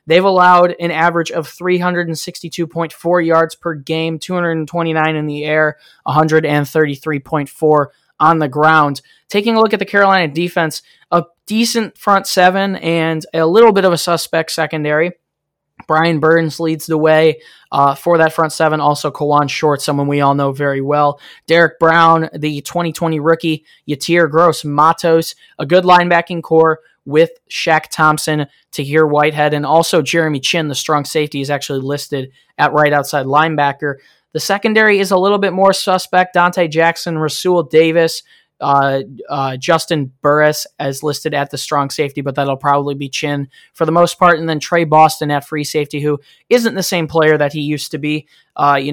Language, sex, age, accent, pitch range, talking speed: English, male, 20-39, American, 150-170 Hz, 165 wpm